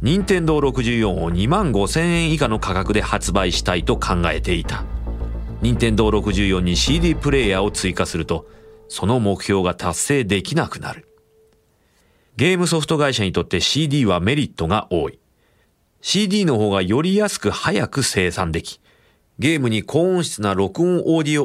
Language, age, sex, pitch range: Japanese, 40-59, male, 95-135 Hz